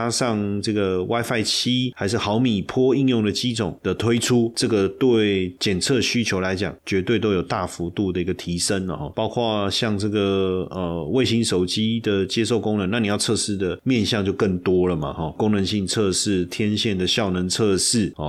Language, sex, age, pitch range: Chinese, male, 30-49, 90-110 Hz